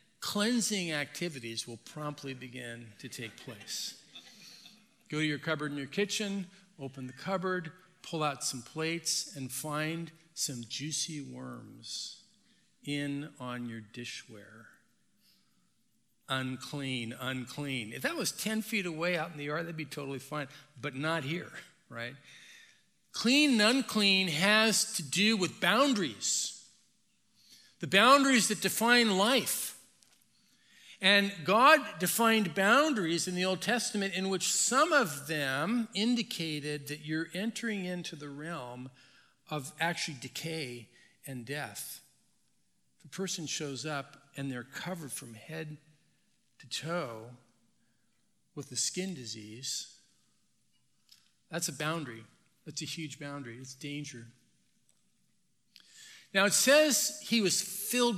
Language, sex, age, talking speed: English, male, 50-69, 125 wpm